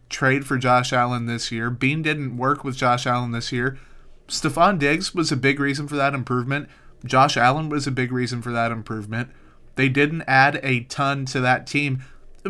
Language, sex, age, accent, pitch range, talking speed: English, male, 30-49, American, 125-145 Hz, 195 wpm